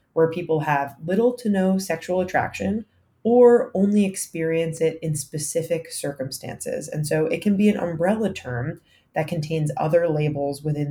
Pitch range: 150-180 Hz